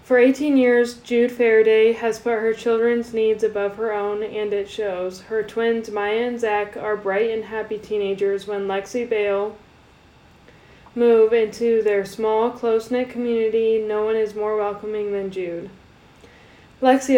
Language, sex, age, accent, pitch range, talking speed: English, female, 10-29, American, 210-235 Hz, 150 wpm